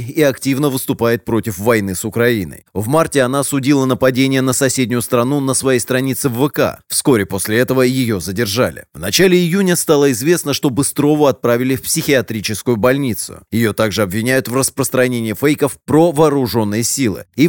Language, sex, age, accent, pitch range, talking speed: Russian, male, 30-49, native, 110-135 Hz, 160 wpm